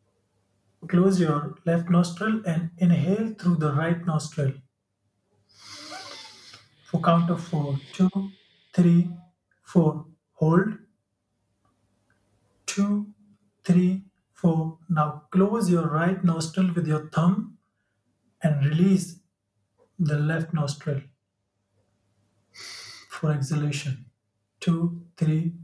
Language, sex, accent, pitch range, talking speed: English, male, Indian, 110-175 Hz, 90 wpm